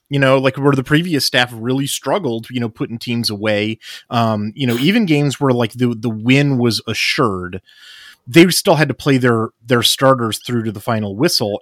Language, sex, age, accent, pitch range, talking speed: English, male, 30-49, American, 105-120 Hz, 200 wpm